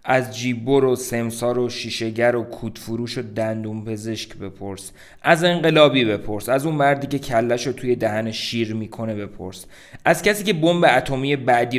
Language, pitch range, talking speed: Persian, 110-130 Hz, 150 wpm